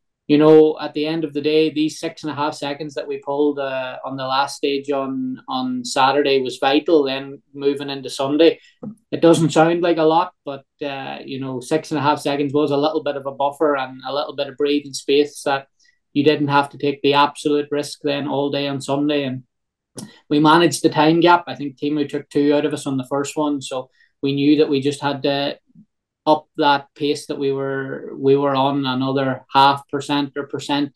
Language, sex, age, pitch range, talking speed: English, male, 20-39, 135-155 Hz, 220 wpm